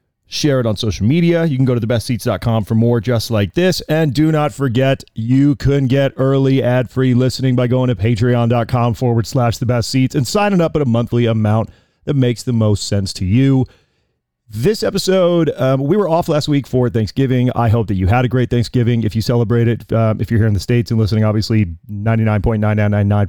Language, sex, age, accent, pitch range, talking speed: English, male, 30-49, American, 110-130 Hz, 210 wpm